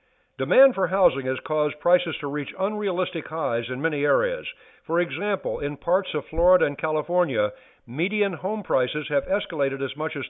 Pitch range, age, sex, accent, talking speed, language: 140-195 Hz, 60-79, male, American, 170 wpm, English